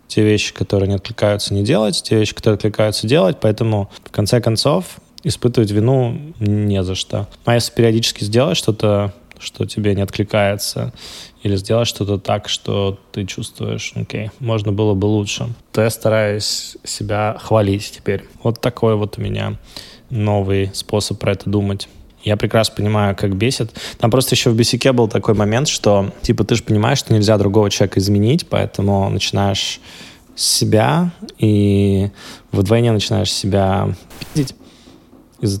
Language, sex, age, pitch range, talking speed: Russian, male, 20-39, 100-115 Hz, 155 wpm